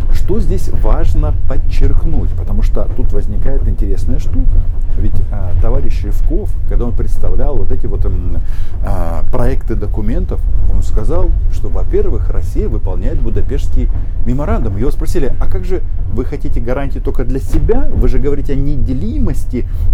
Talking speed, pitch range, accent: 140 wpm, 85-105 Hz, native